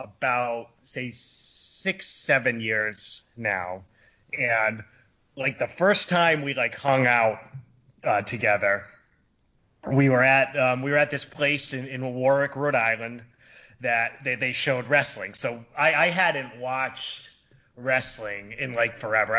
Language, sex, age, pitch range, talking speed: English, male, 30-49, 115-145 Hz, 140 wpm